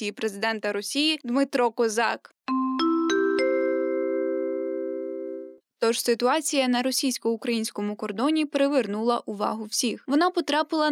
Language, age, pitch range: Ukrainian, 10-29, 225-295 Hz